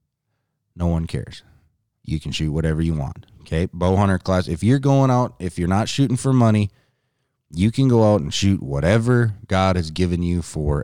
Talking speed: 195 wpm